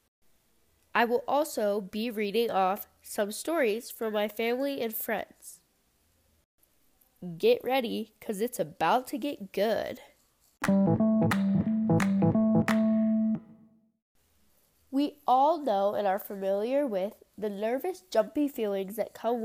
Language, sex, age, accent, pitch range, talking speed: English, female, 10-29, American, 205-265 Hz, 105 wpm